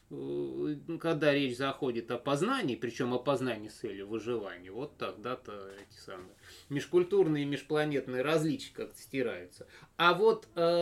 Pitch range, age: 120-165 Hz, 20-39